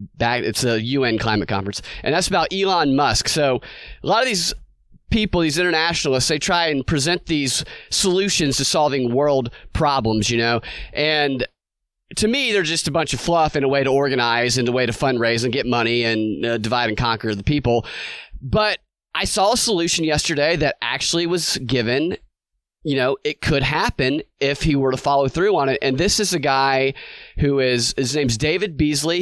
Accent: American